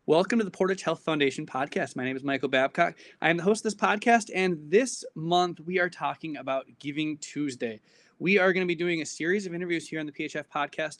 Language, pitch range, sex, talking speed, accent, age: English, 145-180 Hz, male, 235 wpm, American, 20-39